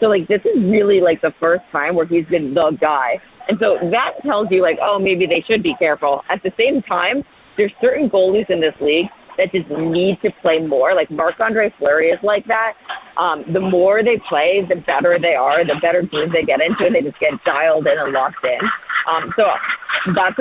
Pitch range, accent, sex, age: 160-210 Hz, American, female, 40-59